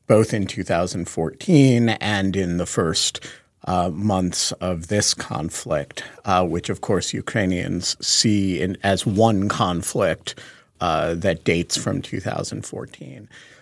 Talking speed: 115 wpm